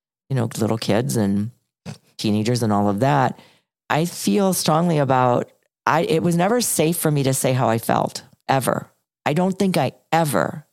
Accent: American